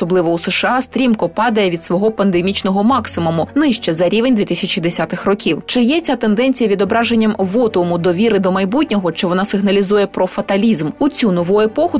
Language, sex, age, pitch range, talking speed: Ukrainian, female, 20-39, 190-240 Hz, 160 wpm